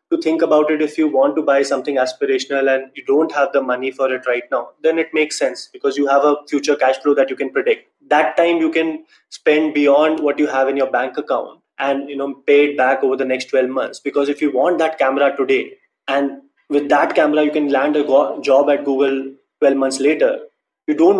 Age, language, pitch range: 20-39, English, 135-160 Hz